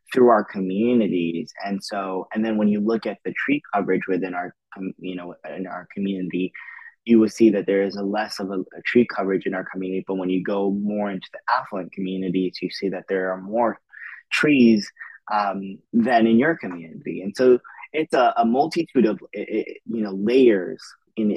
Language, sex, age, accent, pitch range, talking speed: English, male, 20-39, American, 95-110 Hz, 200 wpm